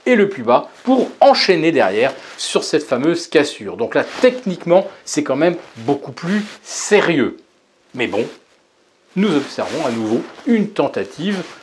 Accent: French